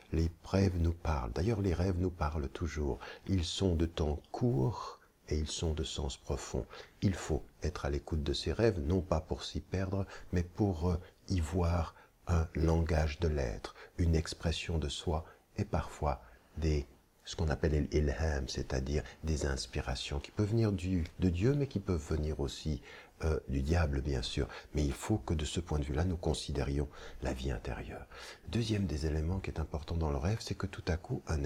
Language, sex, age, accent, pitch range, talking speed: French, male, 60-79, French, 75-95 Hz, 190 wpm